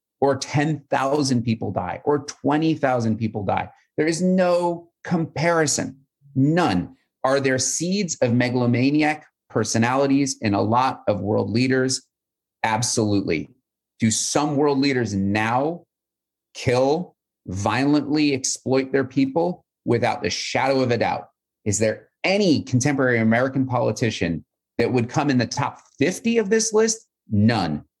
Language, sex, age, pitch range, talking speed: English, male, 30-49, 105-140 Hz, 125 wpm